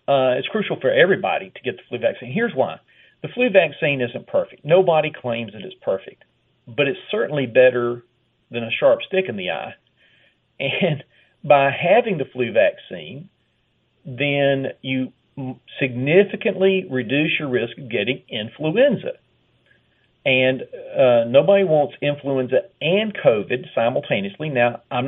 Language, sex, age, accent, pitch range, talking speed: English, male, 40-59, American, 130-185 Hz, 140 wpm